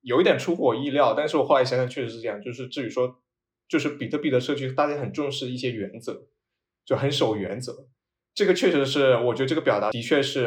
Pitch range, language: 110-140 Hz, Chinese